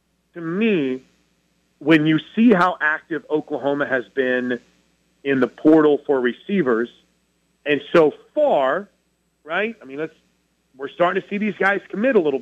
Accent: American